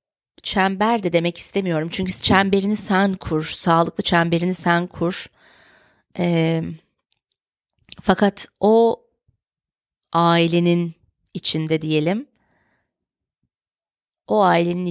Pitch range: 155-180 Hz